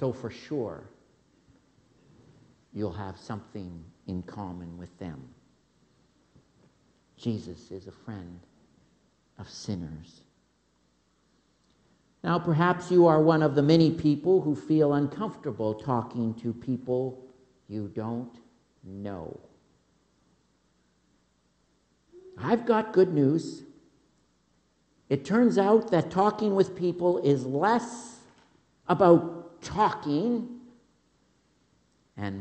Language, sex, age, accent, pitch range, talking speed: English, male, 60-79, American, 100-155 Hz, 95 wpm